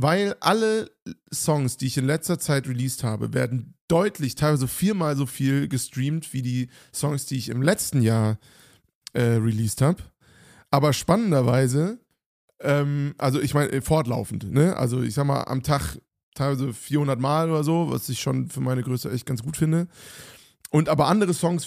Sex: male